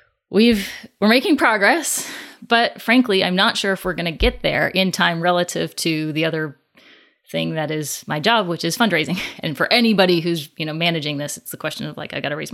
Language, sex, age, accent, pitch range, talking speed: English, female, 30-49, American, 155-195 Hz, 210 wpm